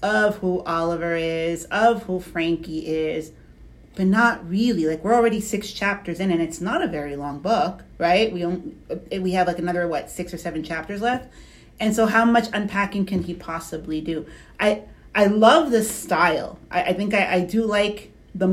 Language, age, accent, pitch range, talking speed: English, 40-59, American, 175-215 Hz, 190 wpm